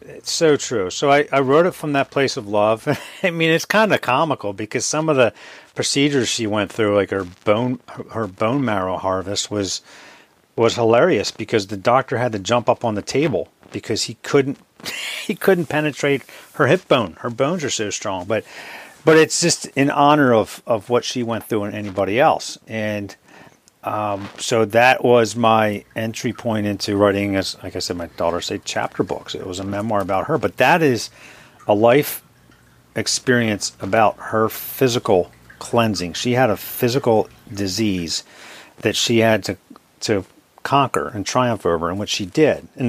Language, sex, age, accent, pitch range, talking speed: English, male, 50-69, American, 100-130 Hz, 185 wpm